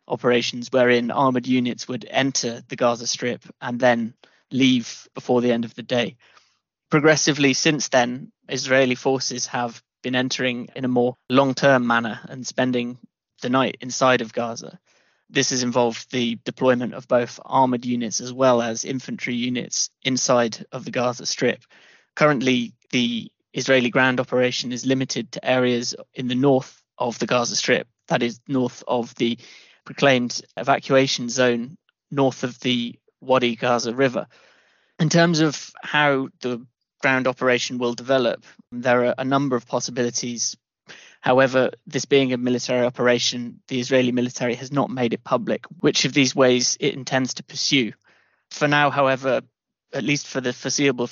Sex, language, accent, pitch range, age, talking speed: male, English, British, 120-135 Hz, 20-39, 155 wpm